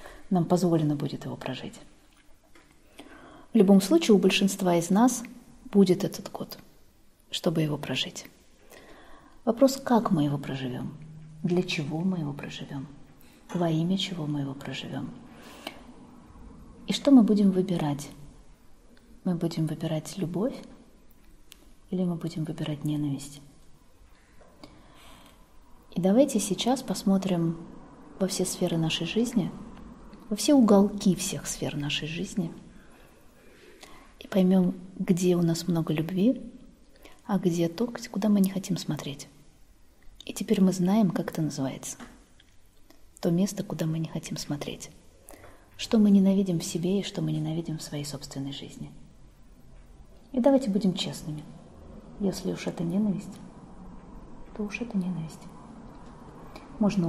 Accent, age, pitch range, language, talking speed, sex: native, 30-49, 160-210 Hz, Russian, 125 wpm, female